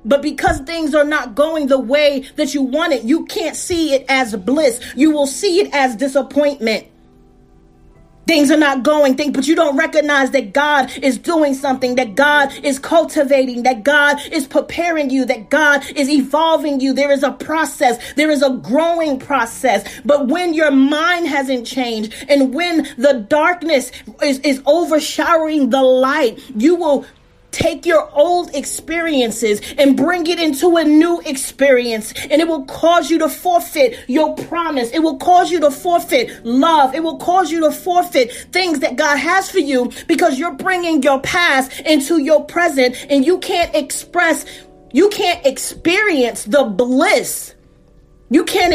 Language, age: English, 30-49